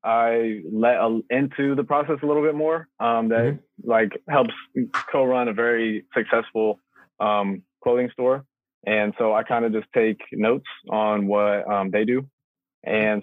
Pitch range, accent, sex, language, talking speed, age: 105-125 Hz, American, male, English, 160 wpm, 20-39